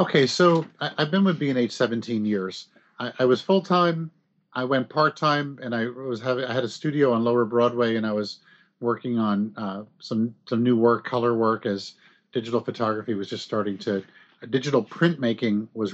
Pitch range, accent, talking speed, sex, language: 110-130 Hz, American, 195 wpm, male, English